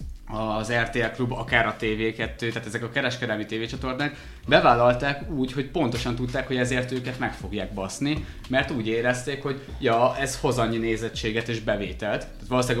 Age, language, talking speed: 20-39, Hungarian, 165 wpm